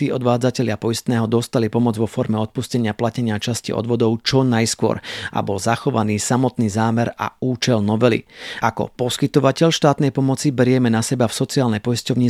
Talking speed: 145 wpm